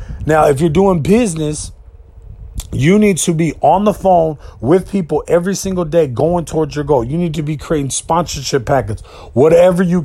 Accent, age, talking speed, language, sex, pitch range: American, 30-49, 180 wpm, English, male, 135-185 Hz